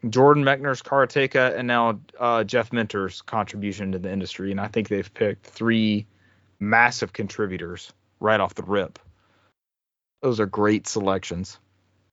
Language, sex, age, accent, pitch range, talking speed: English, male, 30-49, American, 100-135 Hz, 140 wpm